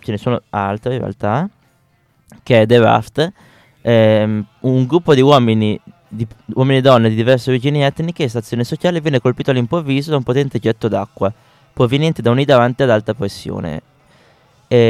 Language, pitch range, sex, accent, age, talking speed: Italian, 110-130 Hz, male, native, 20-39, 170 wpm